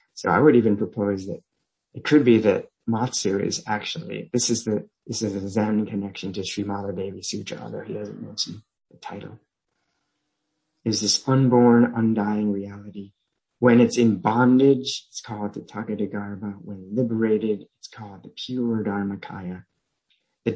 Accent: American